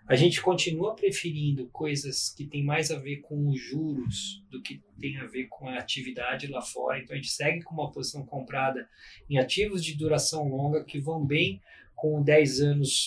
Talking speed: 195 wpm